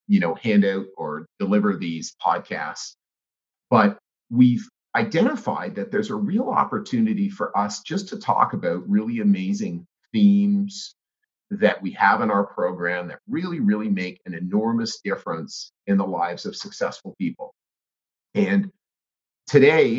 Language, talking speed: English, 140 wpm